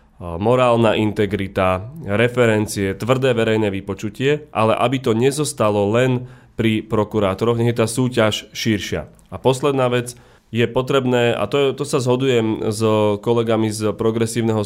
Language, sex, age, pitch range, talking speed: Slovak, male, 30-49, 105-120 Hz, 130 wpm